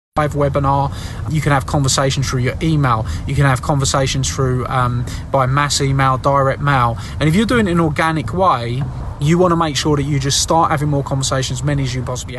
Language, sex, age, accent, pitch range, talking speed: English, male, 20-39, British, 130-160 Hz, 220 wpm